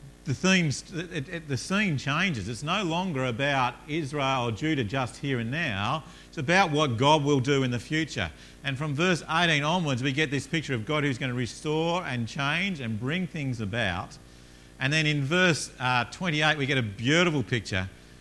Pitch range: 95-145 Hz